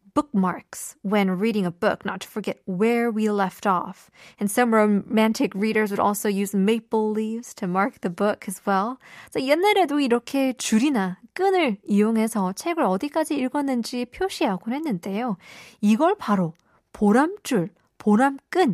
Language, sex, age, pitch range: Korean, female, 20-39, 200-275 Hz